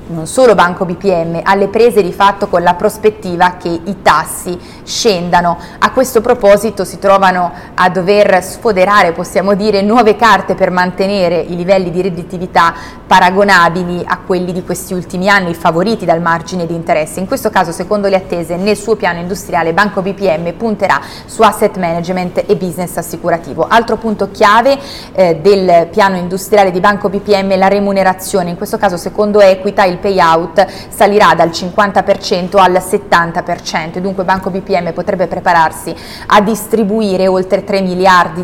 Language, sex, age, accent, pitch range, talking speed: Italian, female, 30-49, native, 175-205 Hz, 155 wpm